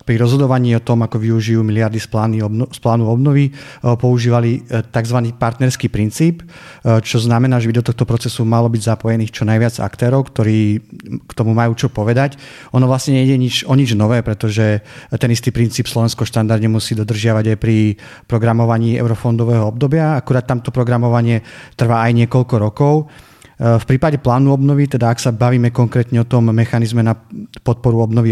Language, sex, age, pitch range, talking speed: Slovak, male, 30-49, 115-130 Hz, 155 wpm